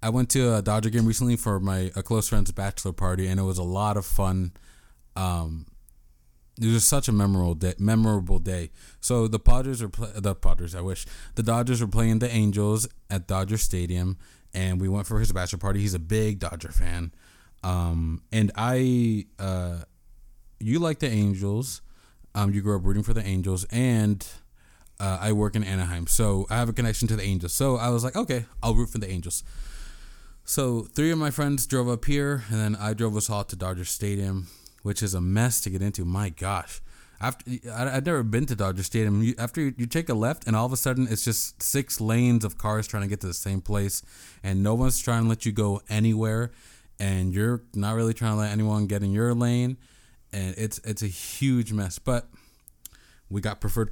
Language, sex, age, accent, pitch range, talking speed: English, male, 20-39, American, 95-115 Hz, 210 wpm